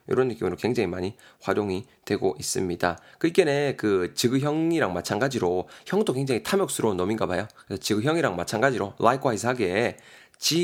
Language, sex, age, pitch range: Korean, male, 20-39, 95-140 Hz